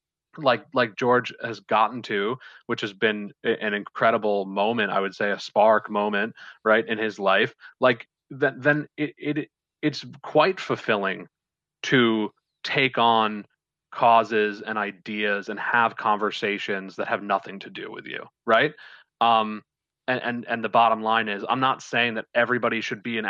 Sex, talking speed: male, 160 wpm